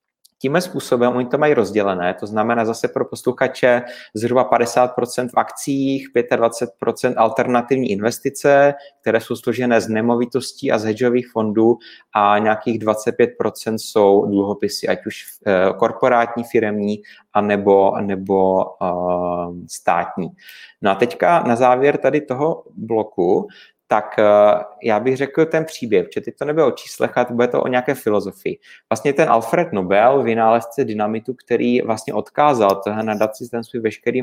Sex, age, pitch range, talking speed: male, 30-49, 105-125 Hz, 140 wpm